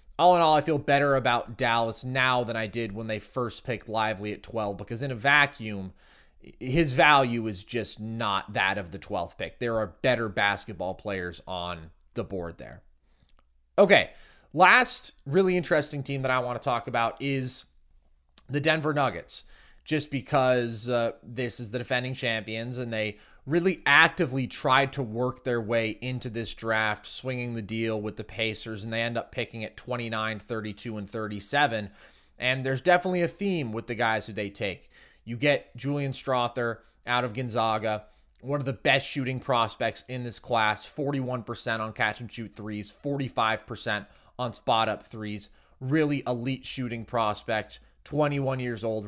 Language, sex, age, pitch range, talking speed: English, male, 20-39, 105-130 Hz, 165 wpm